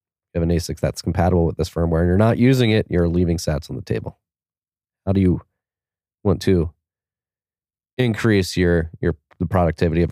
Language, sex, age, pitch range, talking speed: English, male, 20-39, 85-95 Hz, 185 wpm